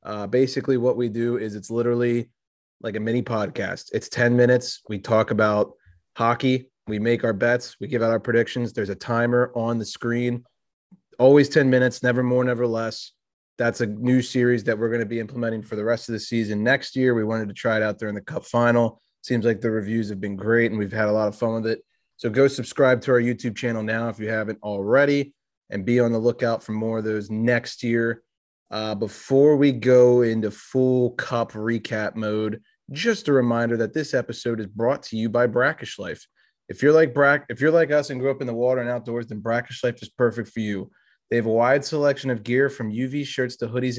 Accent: American